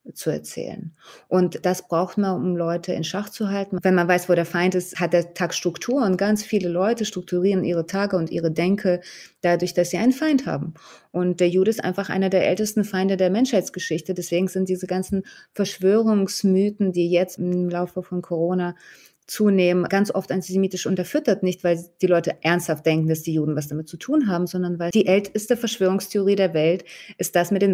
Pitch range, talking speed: 170-200 Hz, 195 wpm